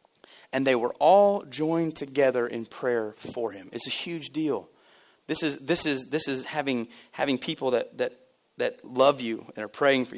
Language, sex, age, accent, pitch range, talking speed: English, male, 30-49, American, 130-185 Hz, 190 wpm